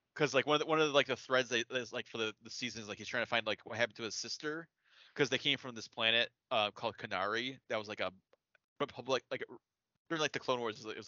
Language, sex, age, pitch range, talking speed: English, male, 20-39, 110-140 Hz, 280 wpm